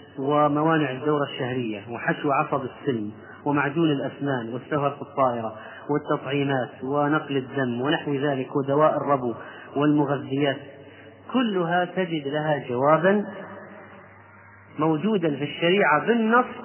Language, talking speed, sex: Arabic, 95 wpm, male